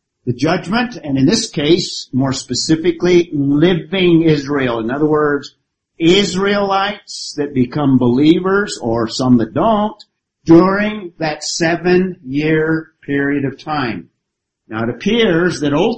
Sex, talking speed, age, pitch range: male, 120 wpm, 50-69, 125-170 Hz